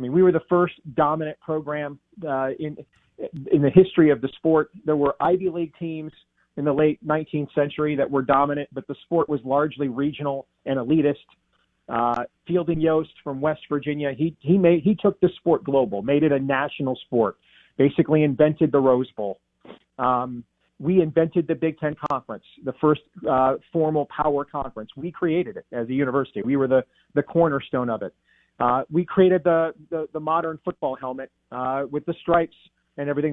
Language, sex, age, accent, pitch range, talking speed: English, male, 40-59, American, 135-165 Hz, 185 wpm